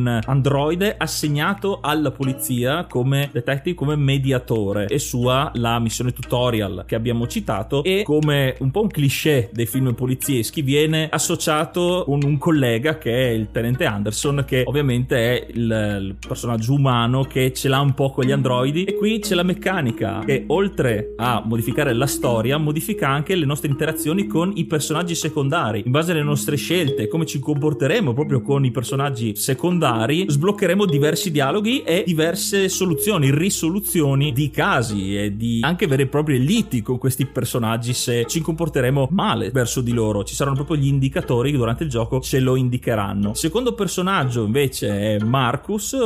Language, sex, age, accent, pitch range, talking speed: Italian, male, 30-49, native, 125-160 Hz, 165 wpm